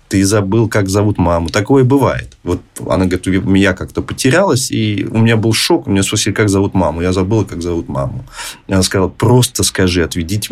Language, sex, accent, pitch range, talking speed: Russian, male, native, 95-115 Hz, 200 wpm